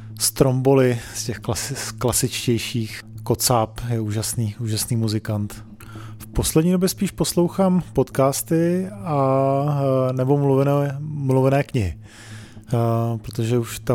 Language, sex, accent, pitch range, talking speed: Czech, male, native, 115-130 Hz, 100 wpm